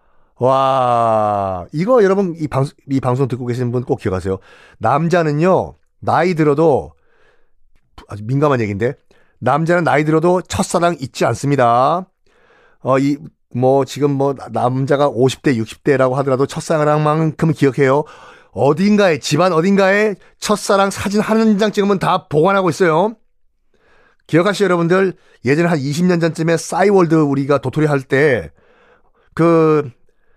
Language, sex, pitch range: Korean, male, 145-210 Hz